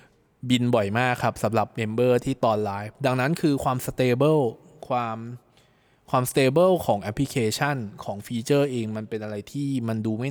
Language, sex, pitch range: Thai, male, 110-140 Hz